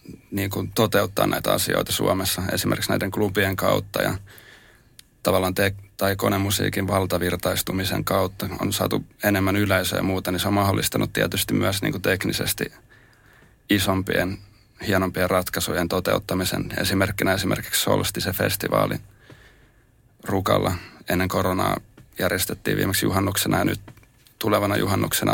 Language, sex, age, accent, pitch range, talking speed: Finnish, male, 30-49, native, 95-105 Hz, 115 wpm